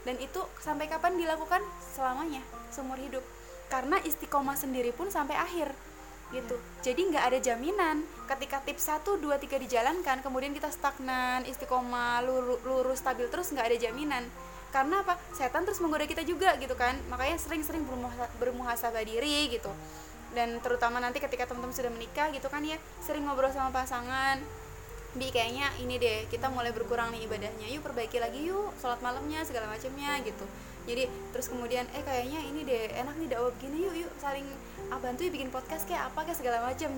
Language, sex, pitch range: Indonesian, female, 245-305 Hz